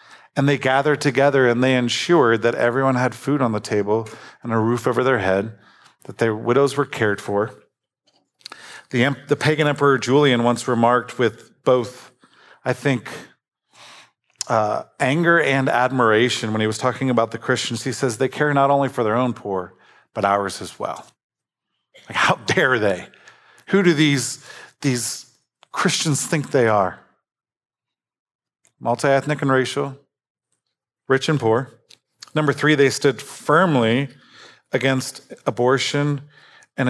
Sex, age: male, 40-59